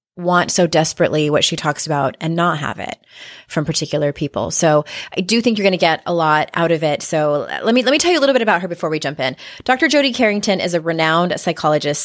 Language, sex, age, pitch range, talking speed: English, female, 30-49, 155-210 Hz, 250 wpm